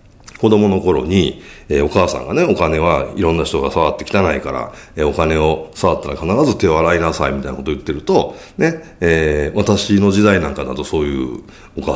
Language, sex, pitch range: Japanese, male, 70-105 Hz